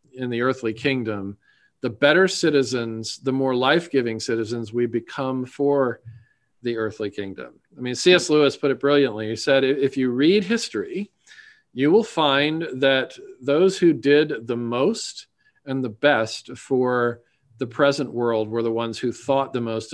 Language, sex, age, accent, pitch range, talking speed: English, male, 40-59, American, 120-145 Hz, 160 wpm